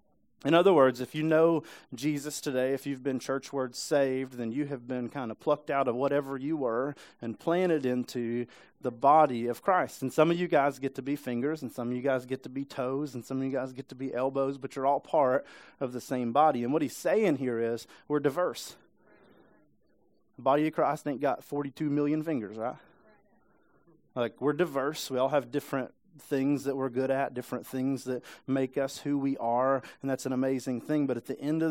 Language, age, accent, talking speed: English, 30-49, American, 220 wpm